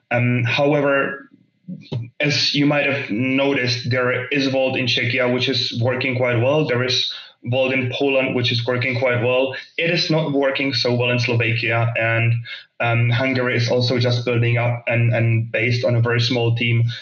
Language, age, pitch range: English, 20-39, 115-130 Hz